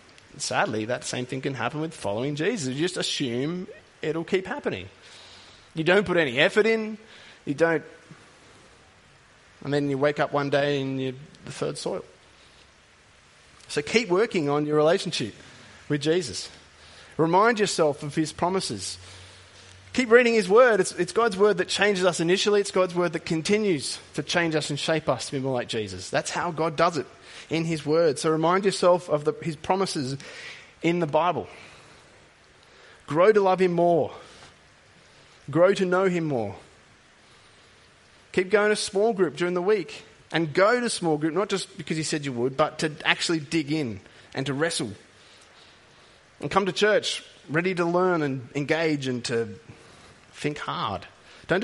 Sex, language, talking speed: male, English, 170 wpm